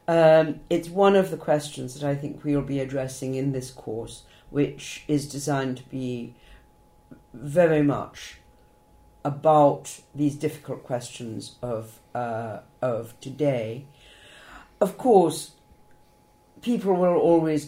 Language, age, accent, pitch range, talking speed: English, 50-69, British, 125-155 Hz, 120 wpm